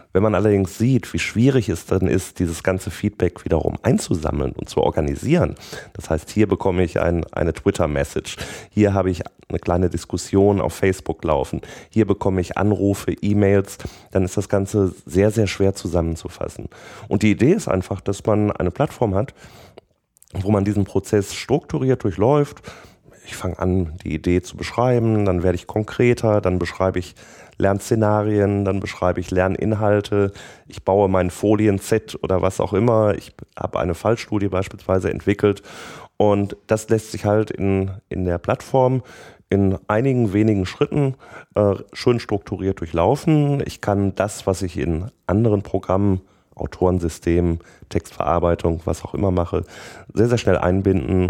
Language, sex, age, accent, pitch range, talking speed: German, male, 30-49, German, 90-105 Hz, 150 wpm